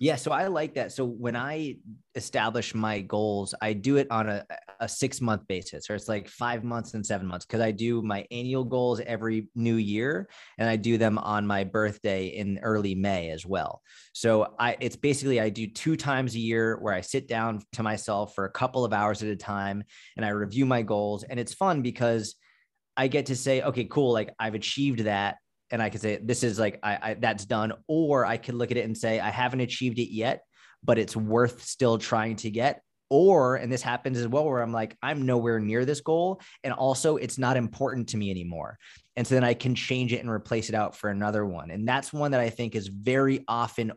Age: 20-39